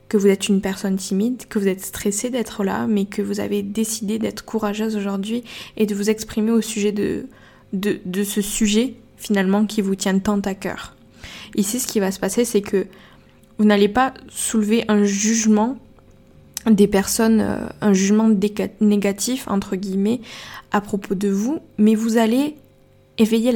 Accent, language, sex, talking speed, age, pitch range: French, French, female, 170 wpm, 20-39, 195-220 Hz